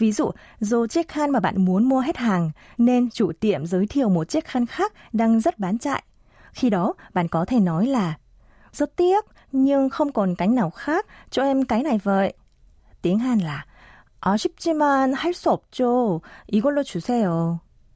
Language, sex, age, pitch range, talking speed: Vietnamese, female, 20-39, 175-255 Hz, 165 wpm